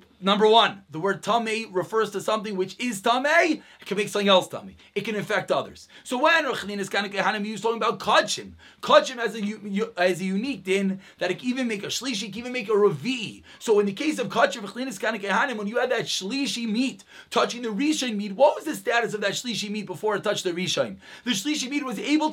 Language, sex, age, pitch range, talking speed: English, male, 30-49, 200-260 Hz, 235 wpm